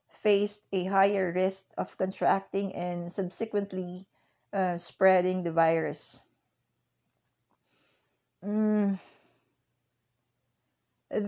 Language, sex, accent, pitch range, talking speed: English, female, Filipino, 175-205 Hz, 70 wpm